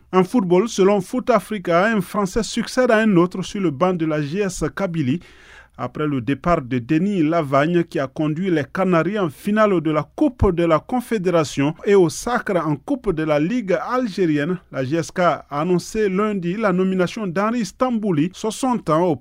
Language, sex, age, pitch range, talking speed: French, male, 40-59, 155-205 Hz, 180 wpm